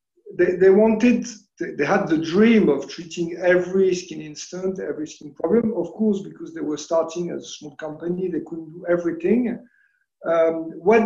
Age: 50-69